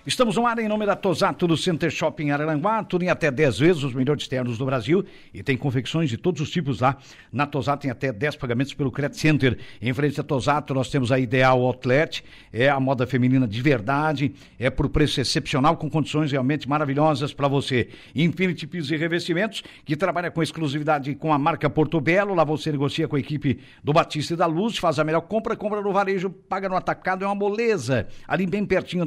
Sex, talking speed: male, 215 wpm